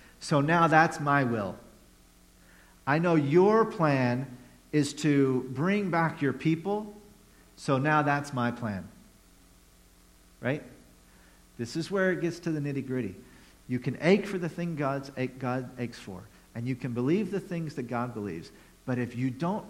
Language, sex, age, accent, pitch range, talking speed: English, male, 50-69, American, 105-160 Hz, 160 wpm